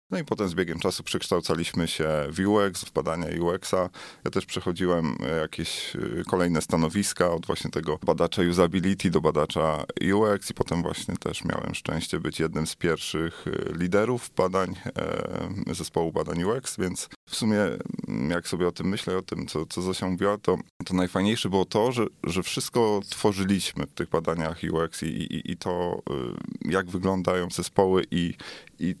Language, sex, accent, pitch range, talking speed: Polish, male, native, 85-100 Hz, 160 wpm